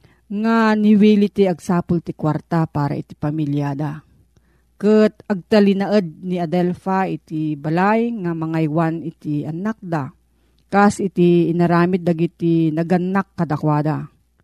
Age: 40-59